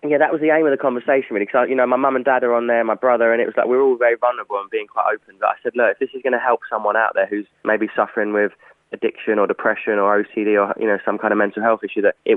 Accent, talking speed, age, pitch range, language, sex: British, 330 wpm, 20-39, 110-125 Hz, English, male